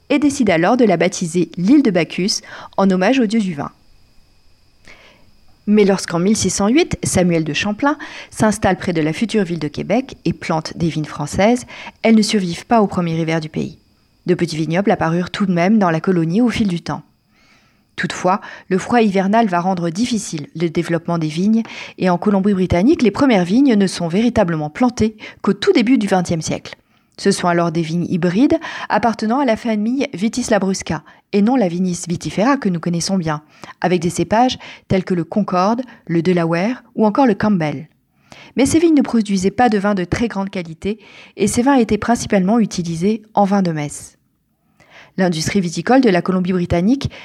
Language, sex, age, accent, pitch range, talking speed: French, female, 40-59, French, 175-230 Hz, 185 wpm